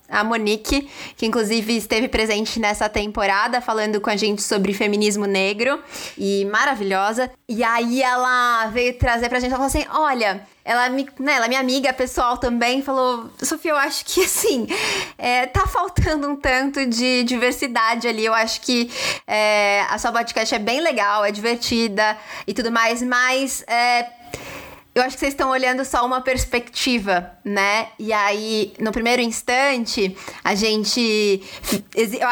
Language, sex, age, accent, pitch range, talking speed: Portuguese, female, 20-39, Brazilian, 225-270 Hz, 150 wpm